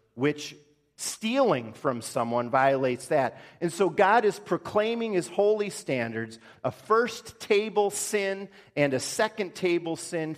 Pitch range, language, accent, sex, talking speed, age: 120-165 Hz, English, American, male, 135 wpm, 40-59